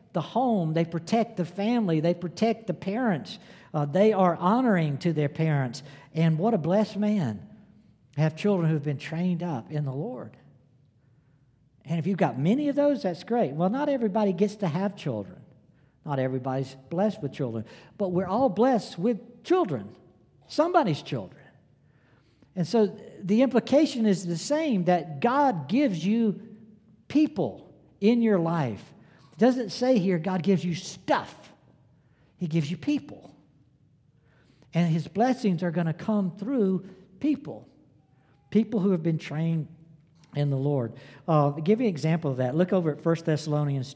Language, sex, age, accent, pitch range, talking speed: English, male, 60-79, American, 145-200 Hz, 160 wpm